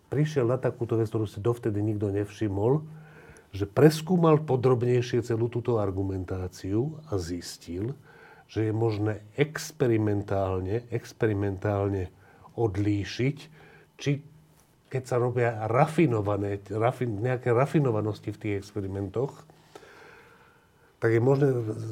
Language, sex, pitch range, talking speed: Slovak, male, 105-145 Hz, 95 wpm